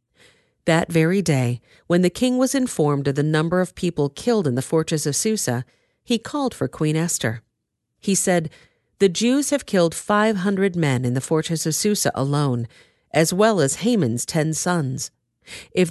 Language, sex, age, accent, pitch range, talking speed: English, female, 50-69, American, 140-195 Hz, 175 wpm